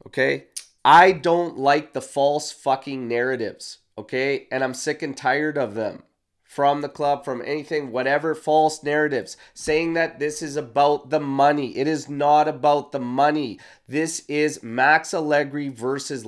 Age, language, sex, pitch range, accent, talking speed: 30-49, English, male, 130-155 Hz, American, 155 wpm